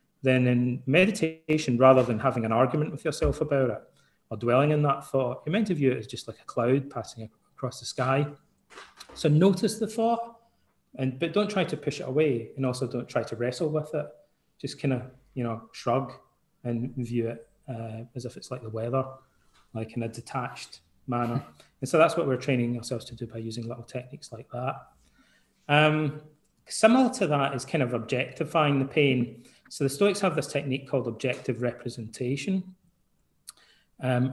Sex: male